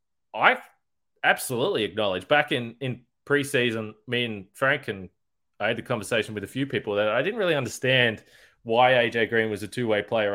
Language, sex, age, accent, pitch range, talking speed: English, male, 20-39, Australian, 120-155 Hz, 180 wpm